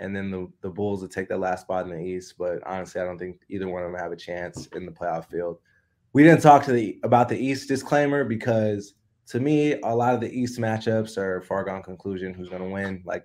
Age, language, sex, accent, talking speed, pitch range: 20-39, English, male, American, 255 wpm, 95-115 Hz